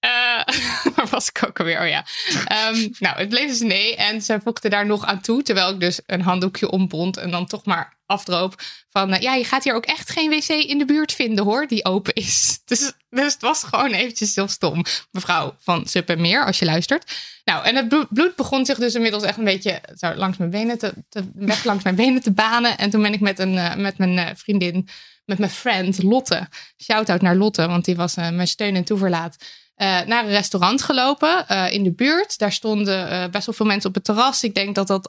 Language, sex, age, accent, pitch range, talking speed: Dutch, female, 20-39, Dutch, 185-230 Hz, 235 wpm